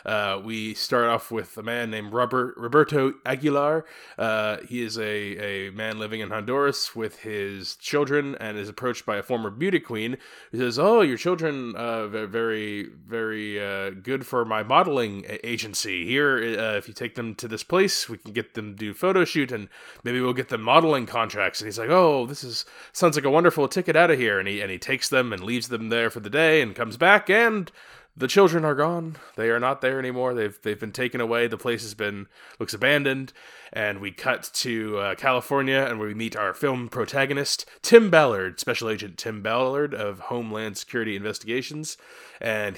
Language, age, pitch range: English, 20-39, 110-135 Hz